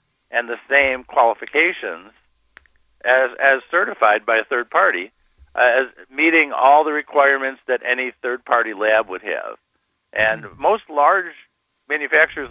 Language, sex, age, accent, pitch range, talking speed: English, male, 50-69, American, 120-145 Hz, 130 wpm